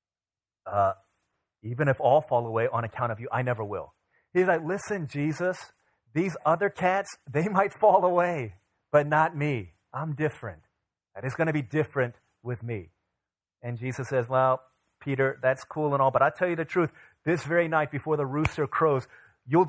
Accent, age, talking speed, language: American, 30-49, 185 wpm, English